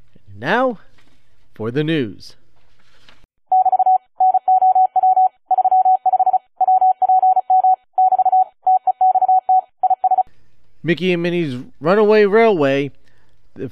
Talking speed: 45 wpm